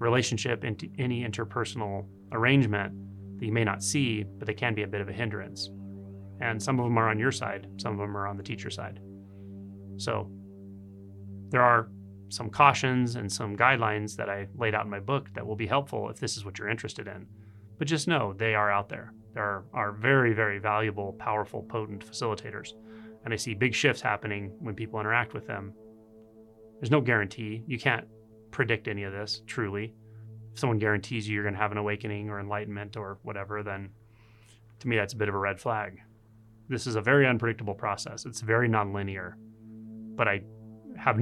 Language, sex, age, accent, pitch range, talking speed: English, male, 30-49, American, 100-115 Hz, 195 wpm